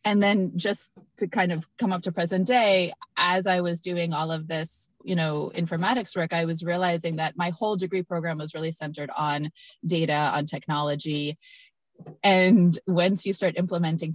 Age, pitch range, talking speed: 20-39, 160-195 Hz, 180 wpm